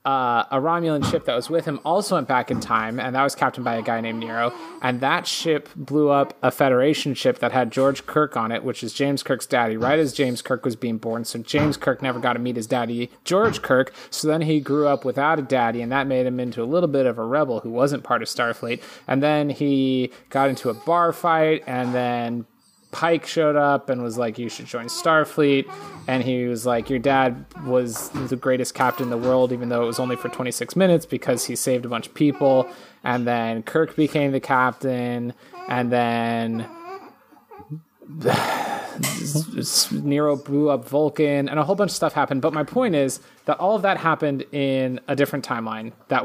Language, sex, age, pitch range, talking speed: English, male, 30-49, 120-150 Hz, 215 wpm